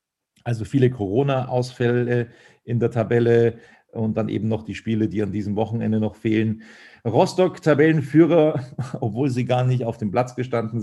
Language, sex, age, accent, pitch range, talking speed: German, male, 40-59, German, 110-135 Hz, 155 wpm